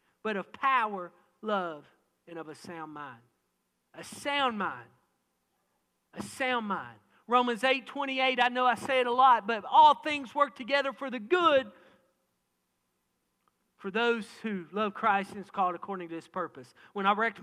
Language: English